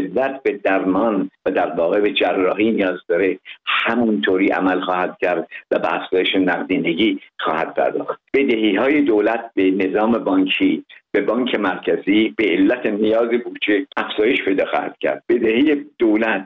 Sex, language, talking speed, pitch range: male, Persian, 140 wpm, 100-140 Hz